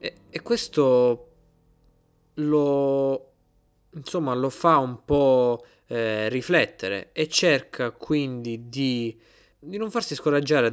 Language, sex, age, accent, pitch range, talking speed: Italian, male, 20-39, native, 110-155 Hz, 100 wpm